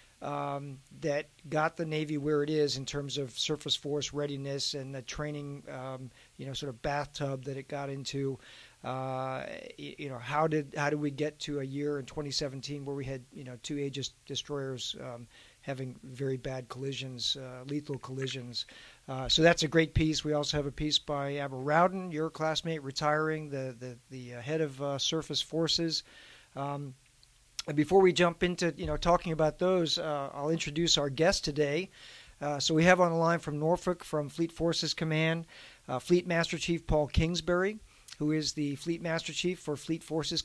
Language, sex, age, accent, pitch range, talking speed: English, male, 50-69, American, 140-160 Hz, 190 wpm